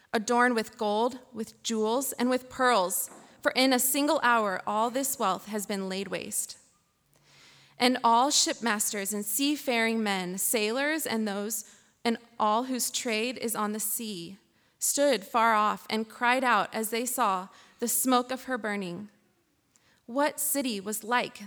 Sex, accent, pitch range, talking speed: female, American, 210-250 Hz, 155 wpm